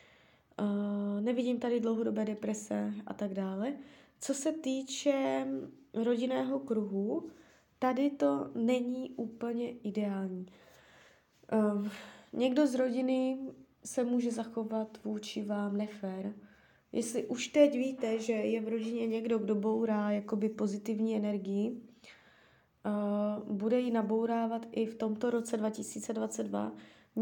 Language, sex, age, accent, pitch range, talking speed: Czech, female, 20-39, native, 205-250 Hz, 110 wpm